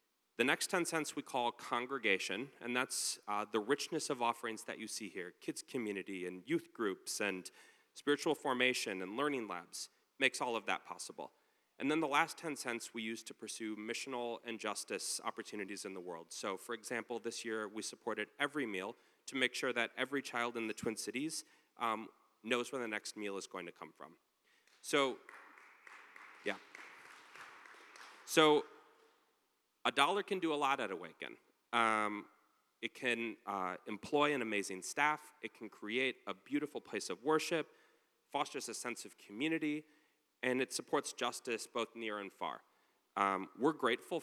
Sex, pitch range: male, 110-145 Hz